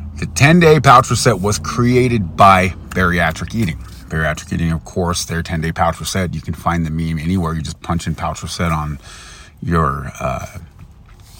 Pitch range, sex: 80-100 Hz, male